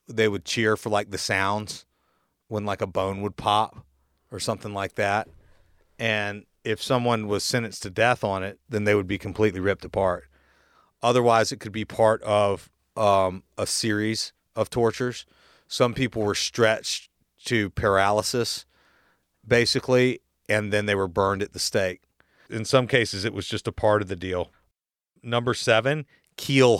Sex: male